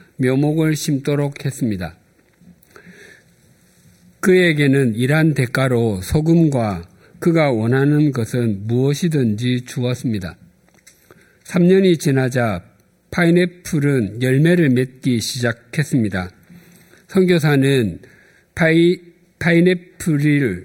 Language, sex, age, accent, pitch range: Korean, male, 50-69, native, 120-165 Hz